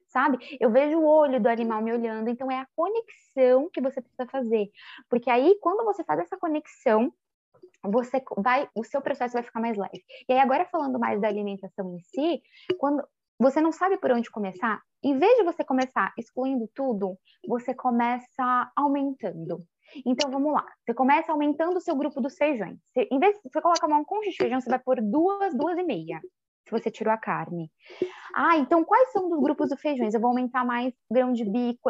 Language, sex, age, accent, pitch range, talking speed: Portuguese, female, 10-29, Brazilian, 235-325 Hz, 200 wpm